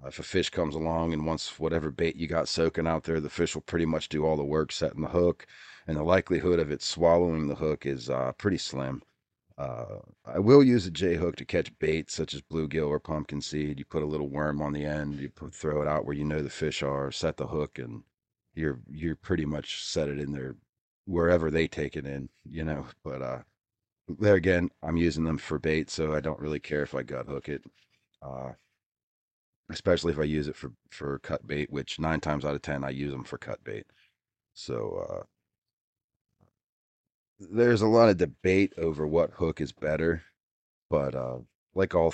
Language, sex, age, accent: English, male, 30-49, American